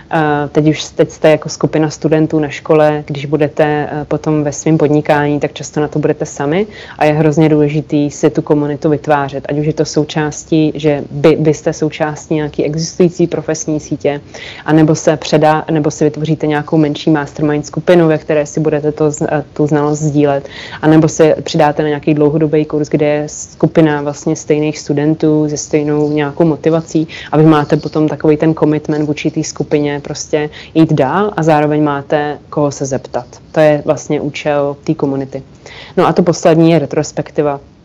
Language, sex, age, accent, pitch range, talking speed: Czech, female, 20-39, native, 145-155 Hz, 170 wpm